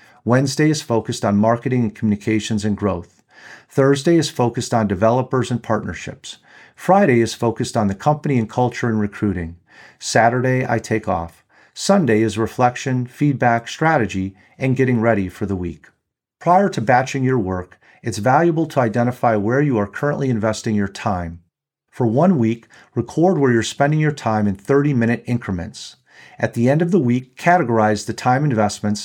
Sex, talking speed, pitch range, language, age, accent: male, 165 wpm, 110-140 Hz, English, 40-59, American